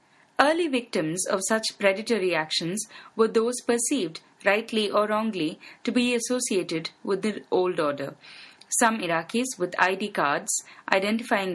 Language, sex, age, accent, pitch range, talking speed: English, female, 30-49, Indian, 180-230 Hz, 130 wpm